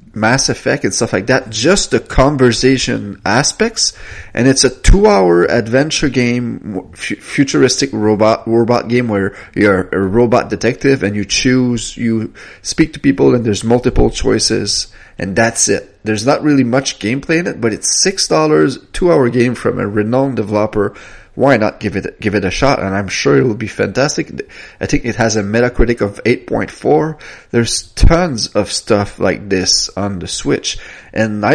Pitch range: 105-135 Hz